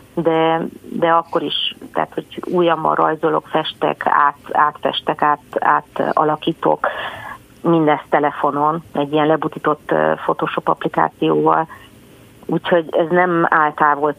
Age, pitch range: 40-59, 150-165 Hz